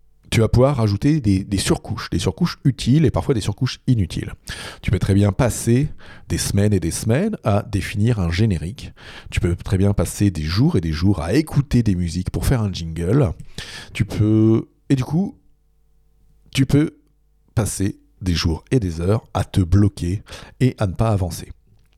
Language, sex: French, male